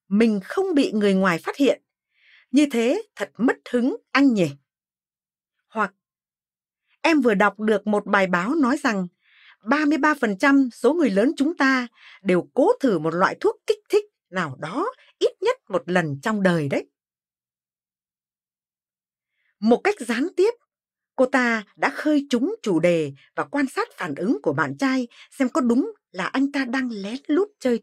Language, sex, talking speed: Vietnamese, female, 165 wpm